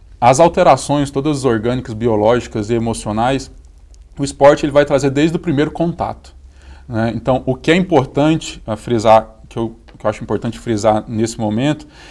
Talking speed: 165 wpm